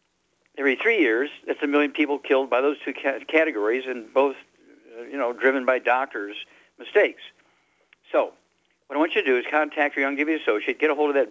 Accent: American